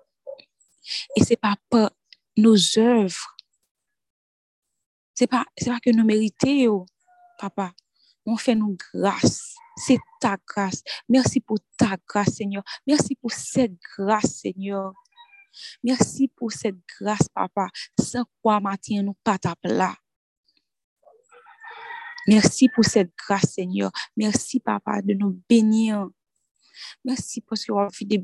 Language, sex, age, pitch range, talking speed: French, female, 20-39, 200-255 Hz, 120 wpm